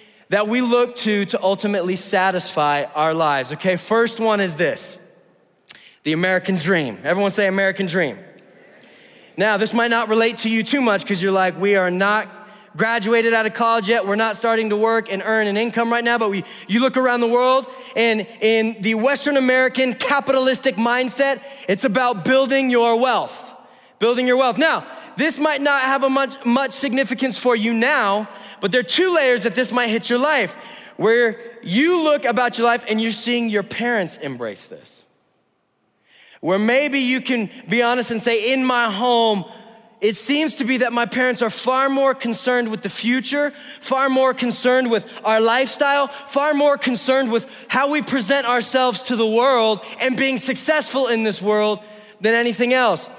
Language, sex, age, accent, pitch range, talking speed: English, male, 20-39, American, 215-260 Hz, 180 wpm